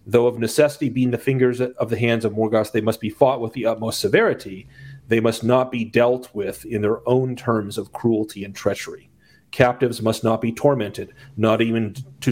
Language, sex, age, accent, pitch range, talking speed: English, male, 40-59, American, 110-130 Hz, 200 wpm